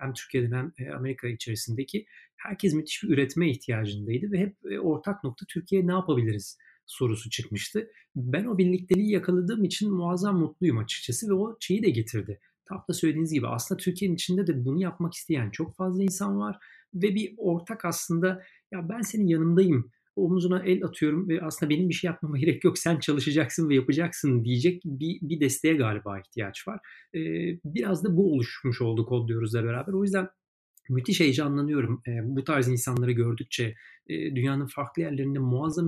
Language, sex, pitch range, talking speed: Turkish, male, 135-180 Hz, 165 wpm